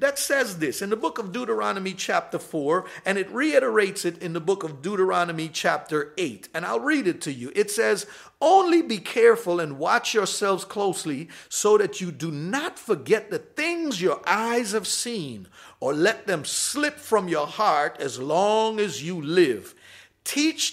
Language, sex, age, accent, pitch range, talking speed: English, male, 50-69, American, 170-245 Hz, 175 wpm